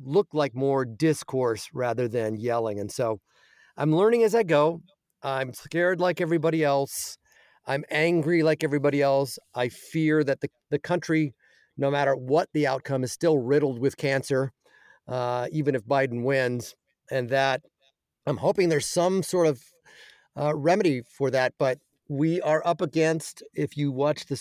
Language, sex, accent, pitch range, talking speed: English, male, American, 135-165 Hz, 160 wpm